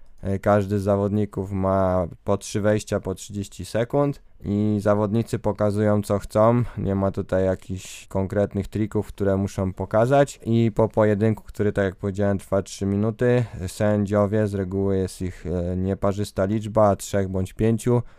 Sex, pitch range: male, 95-105 Hz